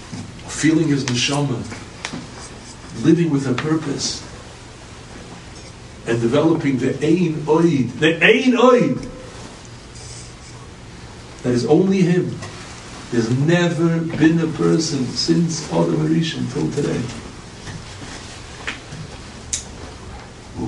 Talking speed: 85 wpm